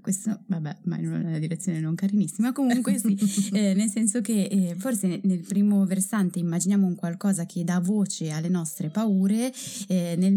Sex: female